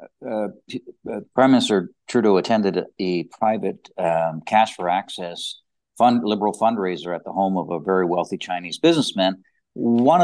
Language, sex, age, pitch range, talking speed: English, male, 60-79, 95-120 Hz, 145 wpm